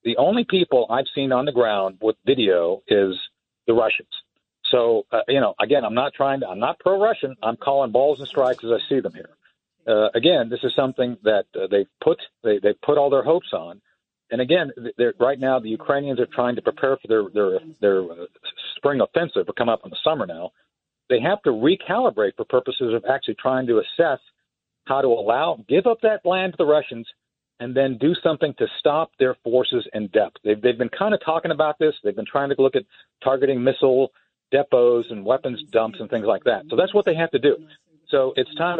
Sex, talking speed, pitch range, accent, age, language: male, 215 wpm, 125-175 Hz, American, 50-69, English